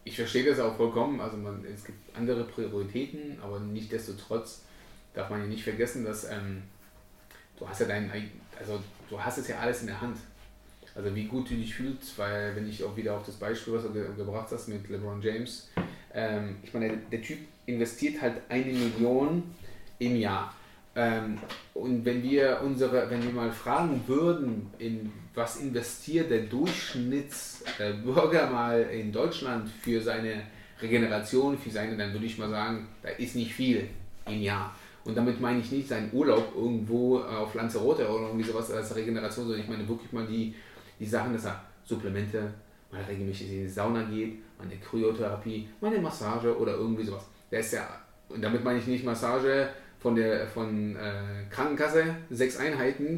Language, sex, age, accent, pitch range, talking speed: German, male, 30-49, German, 105-125 Hz, 175 wpm